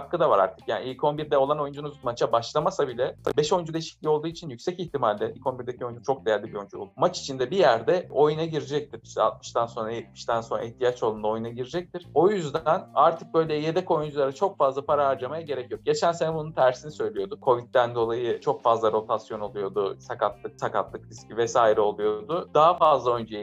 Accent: native